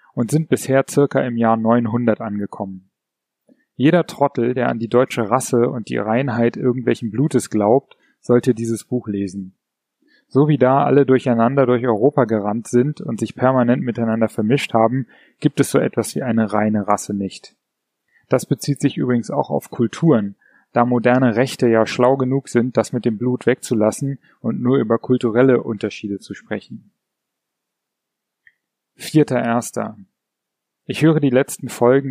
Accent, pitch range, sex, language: German, 115-135 Hz, male, German